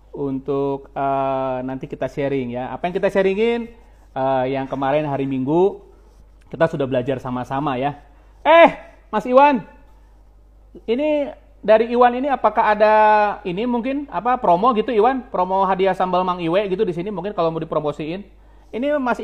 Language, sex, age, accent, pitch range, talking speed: Indonesian, male, 30-49, native, 150-210 Hz, 155 wpm